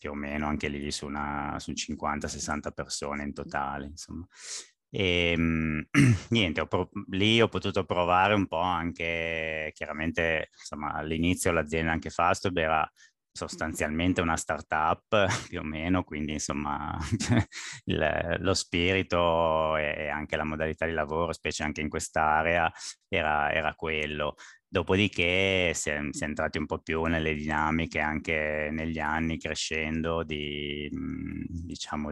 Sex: male